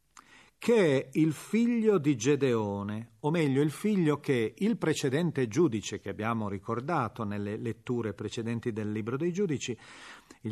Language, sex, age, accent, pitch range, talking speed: Italian, male, 40-59, native, 115-175 Hz, 145 wpm